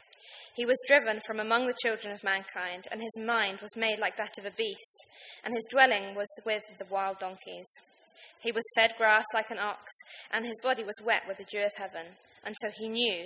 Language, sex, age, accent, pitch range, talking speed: English, female, 20-39, British, 200-235 Hz, 215 wpm